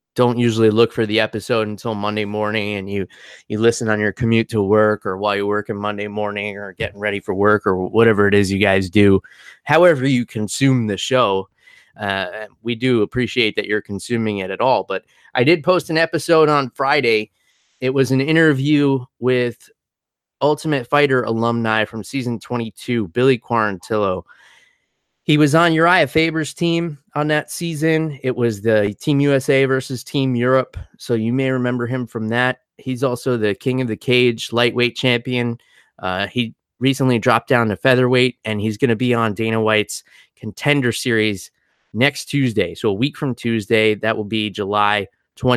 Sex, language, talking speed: male, English, 175 wpm